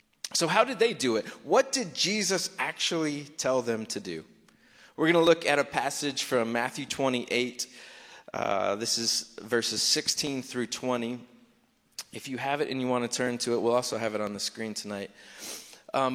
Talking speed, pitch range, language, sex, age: 190 wpm, 120-190 Hz, English, male, 30-49